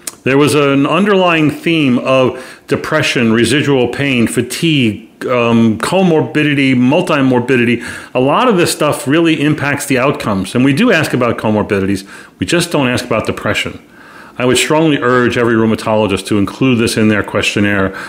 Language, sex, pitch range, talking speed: English, male, 110-135 Hz, 155 wpm